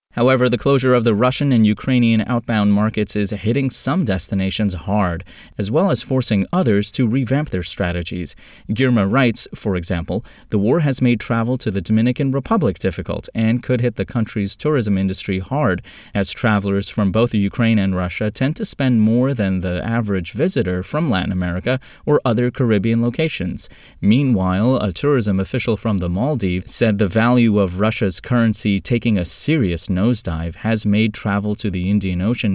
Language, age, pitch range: English, 20-39, 95-125 Hz